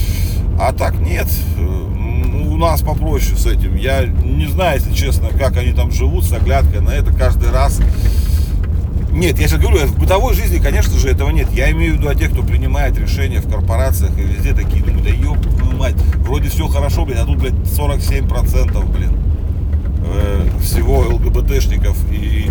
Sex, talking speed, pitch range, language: male, 175 wpm, 75-85 Hz, Russian